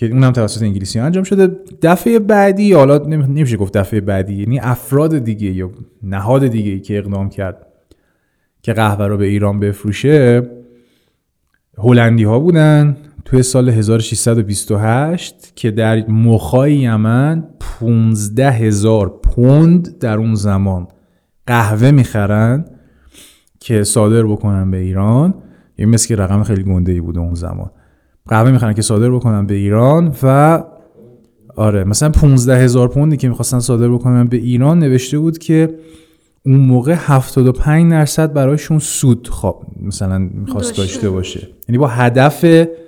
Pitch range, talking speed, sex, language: 105-145 Hz, 135 wpm, male, Persian